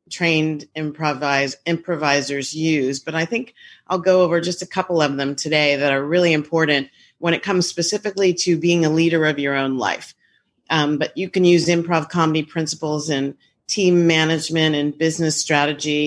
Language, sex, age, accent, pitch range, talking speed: English, female, 40-59, American, 150-175 Hz, 170 wpm